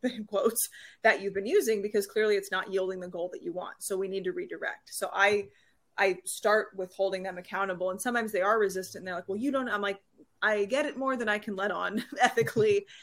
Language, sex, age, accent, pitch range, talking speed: English, female, 20-39, American, 190-220 Hz, 230 wpm